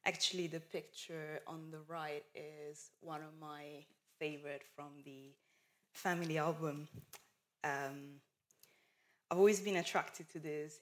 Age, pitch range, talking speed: 20-39, 145-165 Hz, 120 wpm